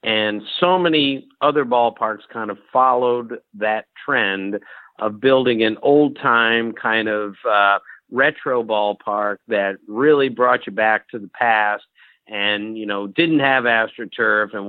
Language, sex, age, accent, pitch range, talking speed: English, male, 50-69, American, 110-135 Hz, 140 wpm